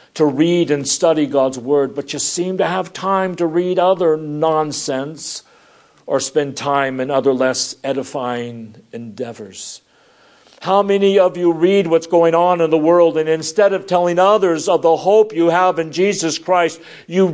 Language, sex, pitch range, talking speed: English, male, 155-205 Hz, 170 wpm